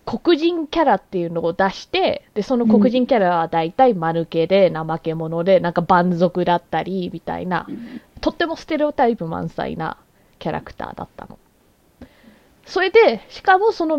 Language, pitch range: Japanese, 185-300 Hz